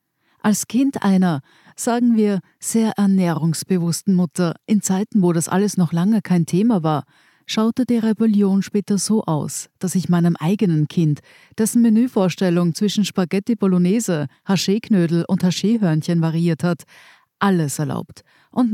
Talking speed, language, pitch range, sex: 135 wpm, German, 160-205 Hz, female